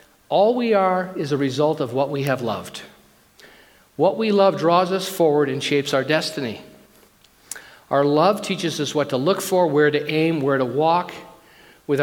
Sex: male